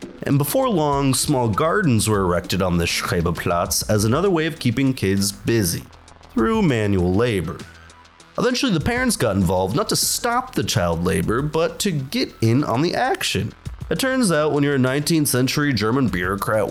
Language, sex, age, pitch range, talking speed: English, male, 30-49, 95-150 Hz, 170 wpm